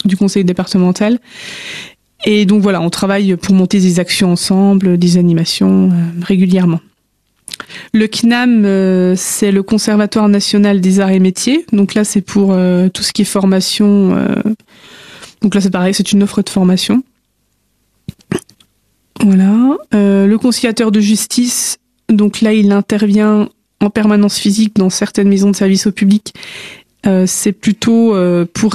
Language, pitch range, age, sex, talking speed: French, 185-215 Hz, 20-39, female, 150 wpm